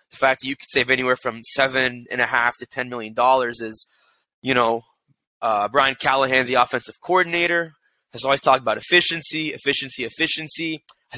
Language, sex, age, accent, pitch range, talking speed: English, male, 20-39, American, 125-155 Hz, 155 wpm